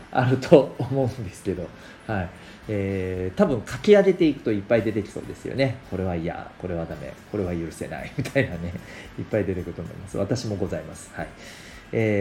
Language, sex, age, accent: Japanese, male, 40-59, native